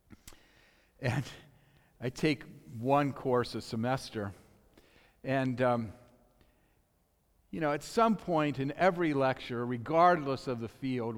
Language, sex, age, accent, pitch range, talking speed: English, male, 50-69, American, 120-200 Hz, 115 wpm